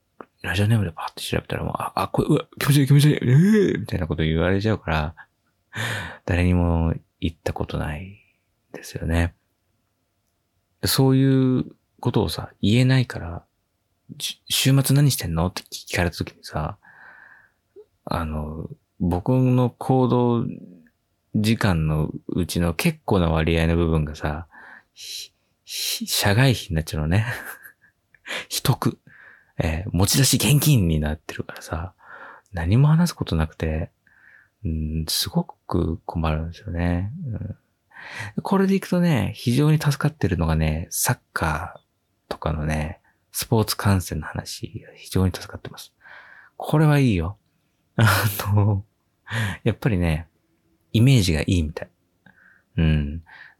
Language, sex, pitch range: Japanese, male, 85-125 Hz